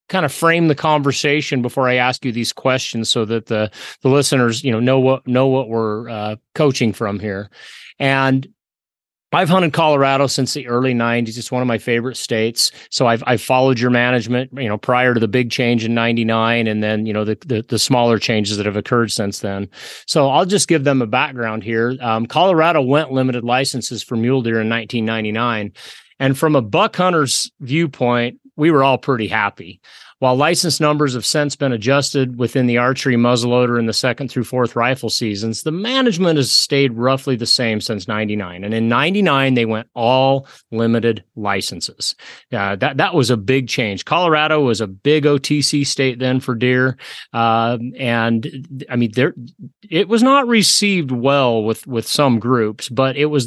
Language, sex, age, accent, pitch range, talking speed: English, male, 30-49, American, 115-140 Hz, 190 wpm